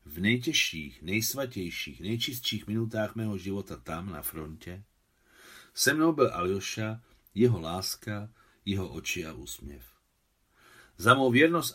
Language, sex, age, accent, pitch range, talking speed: Czech, male, 50-69, native, 90-120 Hz, 115 wpm